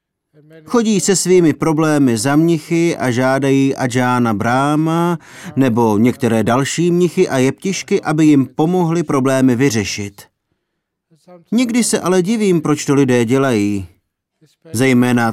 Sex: male